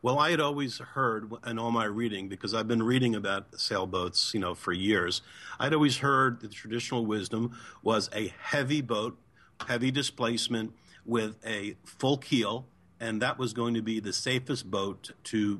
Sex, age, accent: male, 50-69, American